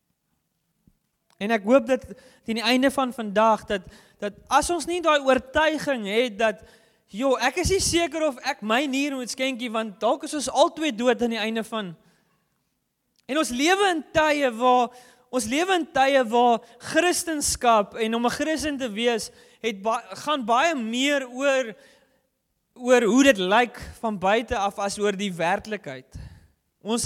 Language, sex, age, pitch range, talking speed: English, male, 20-39, 225-275 Hz, 170 wpm